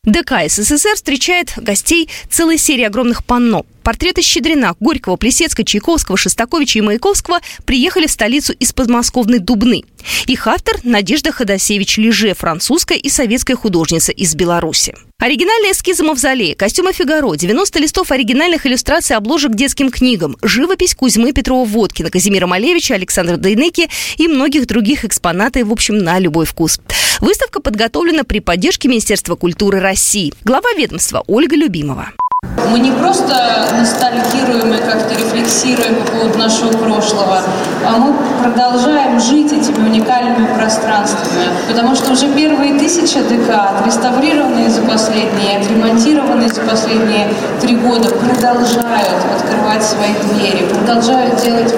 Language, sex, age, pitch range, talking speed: Russian, female, 20-39, 215-280 Hz, 130 wpm